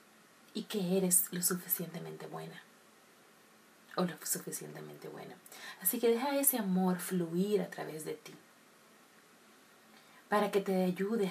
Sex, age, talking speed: female, 30-49, 125 wpm